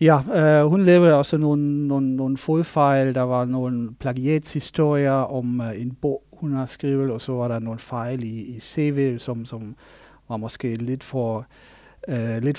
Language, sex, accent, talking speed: Danish, male, German, 155 wpm